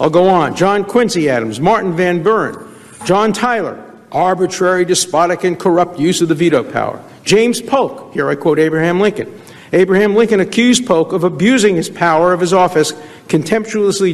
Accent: American